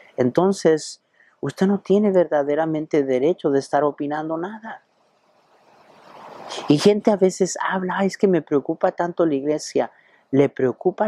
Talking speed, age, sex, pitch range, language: 135 wpm, 50-69, male, 135-190 Hz, Spanish